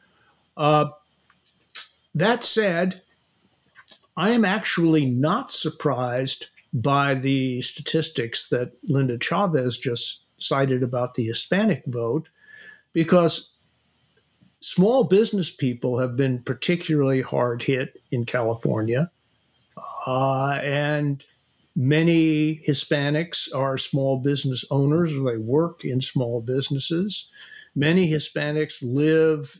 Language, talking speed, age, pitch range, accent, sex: English, 95 wpm, 60-79, 130-160 Hz, American, male